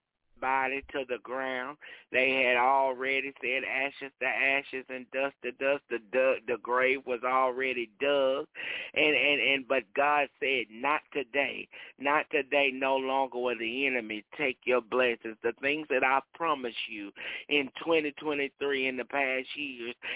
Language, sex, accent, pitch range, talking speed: English, male, American, 130-150 Hz, 150 wpm